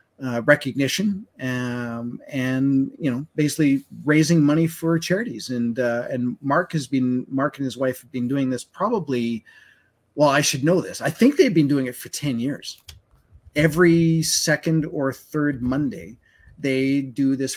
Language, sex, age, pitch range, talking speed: English, male, 30-49, 125-155 Hz, 165 wpm